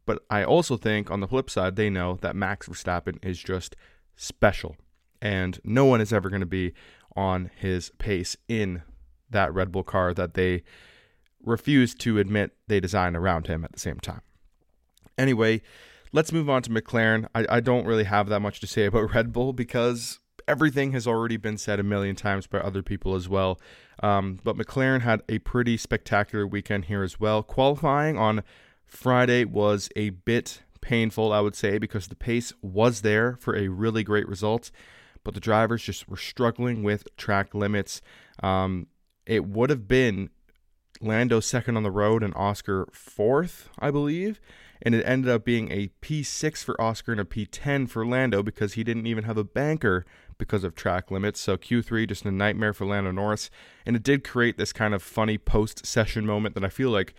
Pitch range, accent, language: 95-120 Hz, American, English